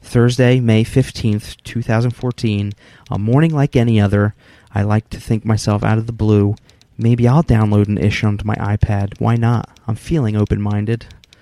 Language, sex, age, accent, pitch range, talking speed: English, male, 30-49, American, 105-130 Hz, 165 wpm